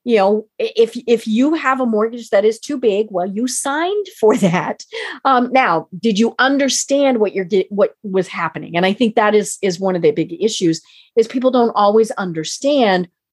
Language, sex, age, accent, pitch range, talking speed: English, female, 40-59, American, 180-255 Hz, 195 wpm